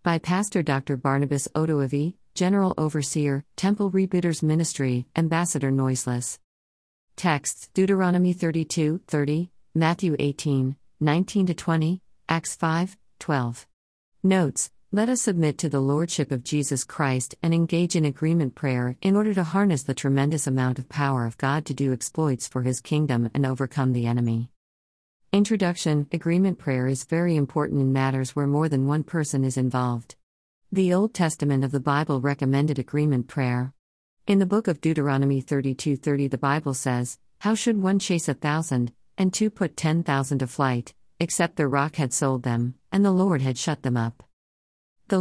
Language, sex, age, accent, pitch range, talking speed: English, female, 50-69, American, 130-170 Hz, 155 wpm